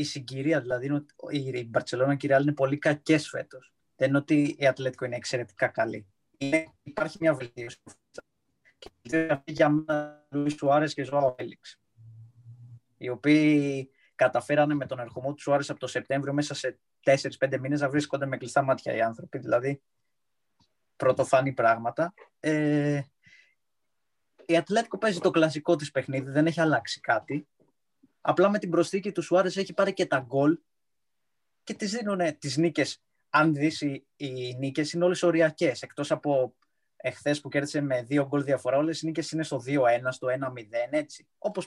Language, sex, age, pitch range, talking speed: Greek, male, 20-39, 130-155 Hz, 160 wpm